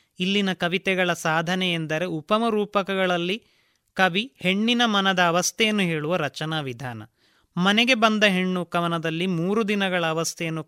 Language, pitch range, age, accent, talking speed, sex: Kannada, 160-205 Hz, 30-49, native, 105 wpm, male